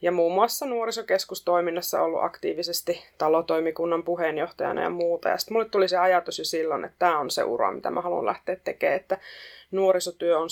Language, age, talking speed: Finnish, 20-39, 175 wpm